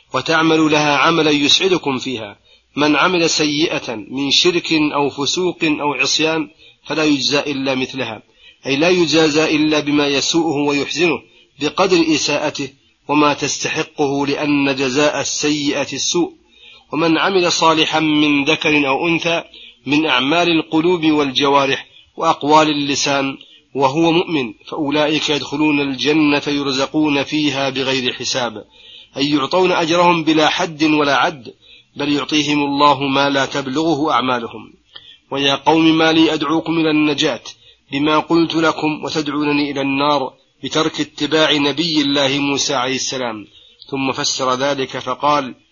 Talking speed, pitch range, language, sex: 120 wpm, 135-155 Hz, Arabic, male